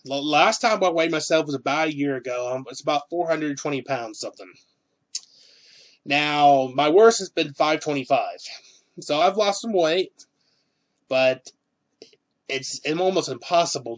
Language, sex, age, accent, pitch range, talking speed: English, male, 20-39, American, 135-175 Hz, 135 wpm